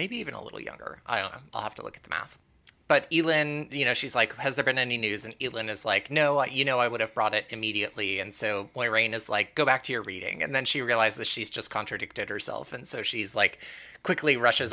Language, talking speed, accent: English, 260 wpm, American